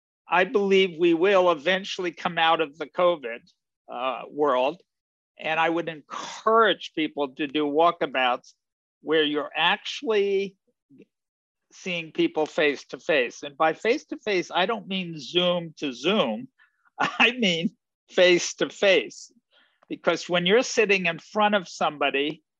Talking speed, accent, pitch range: 140 wpm, American, 155-200 Hz